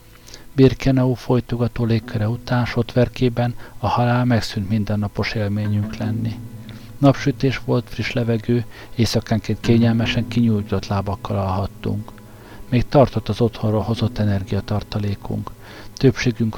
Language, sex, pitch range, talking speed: Hungarian, male, 105-120 Hz, 100 wpm